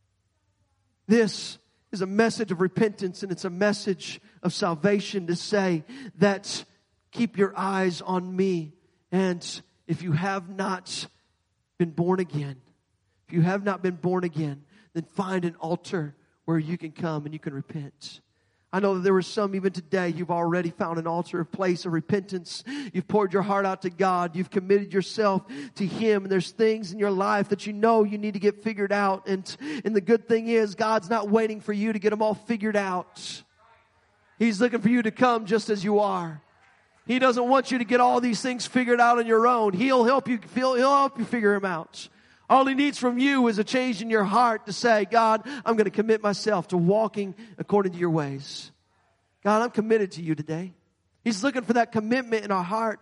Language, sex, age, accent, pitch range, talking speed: English, male, 40-59, American, 175-225 Hz, 205 wpm